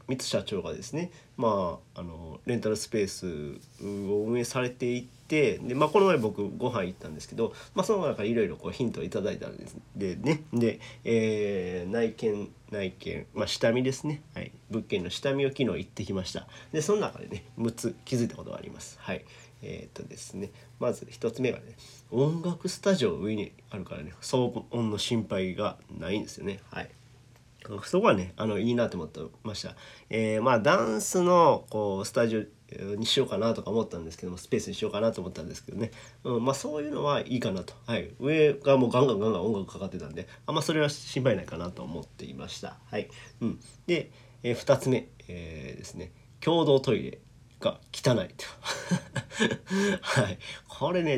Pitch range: 110-145 Hz